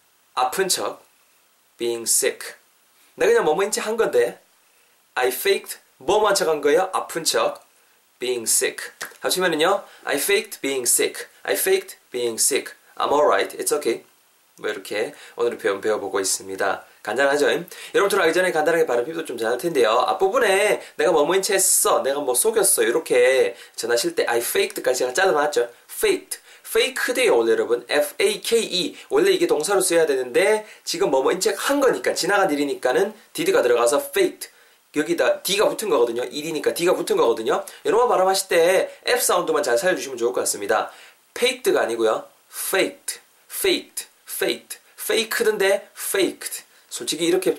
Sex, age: male, 20-39